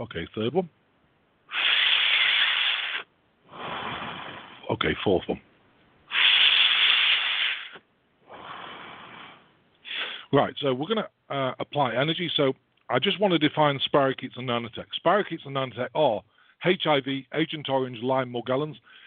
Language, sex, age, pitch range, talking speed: English, male, 50-69, 120-150 Hz, 100 wpm